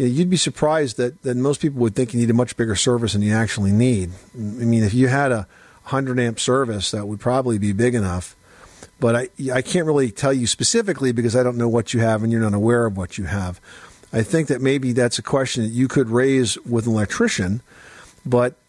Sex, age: male, 50-69